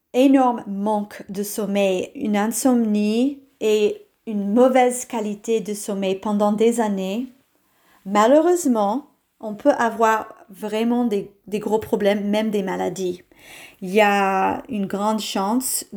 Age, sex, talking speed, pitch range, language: 40-59, female, 125 wpm, 200-255 Hz, French